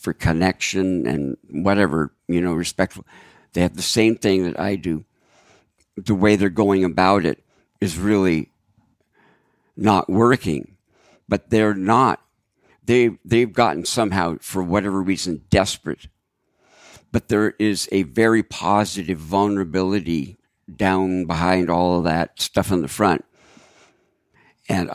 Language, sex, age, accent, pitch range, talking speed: English, male, 60-79, American, 90-110 Hz, 125 wpm